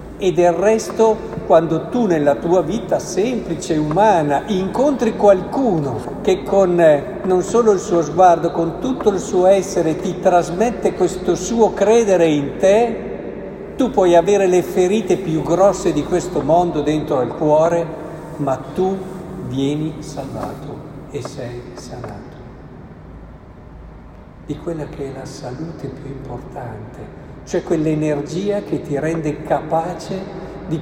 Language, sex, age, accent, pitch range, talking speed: Italian, male, 50-69, native, 150-190 Hz, 130 wpm